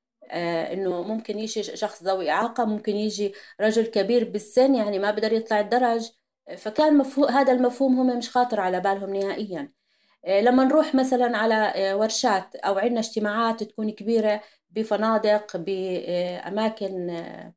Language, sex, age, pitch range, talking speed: Arabic, female, 30-49, 200-245 Hz, 130 wpm